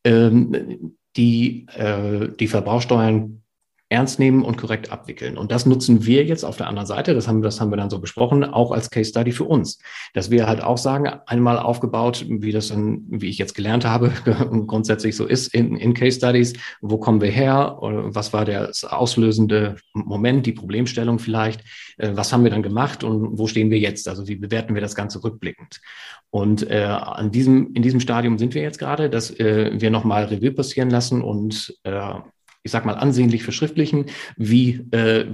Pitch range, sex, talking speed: 105-120 Hz, male, 185 wpm